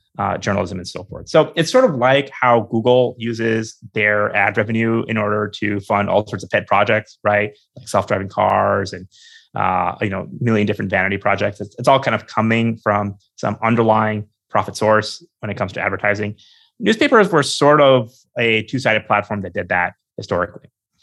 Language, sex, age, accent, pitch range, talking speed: English, male, 30-49, American, 100-130 Hz, 185 wpm